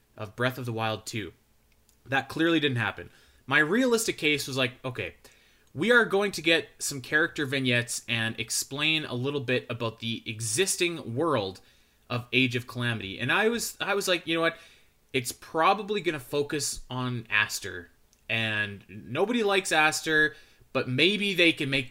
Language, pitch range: English, 115-150 Hz